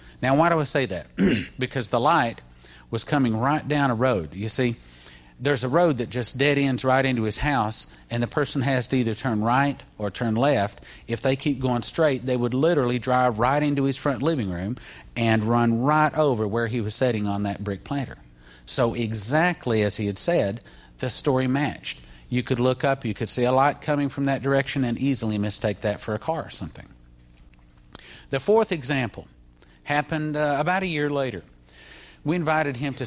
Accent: American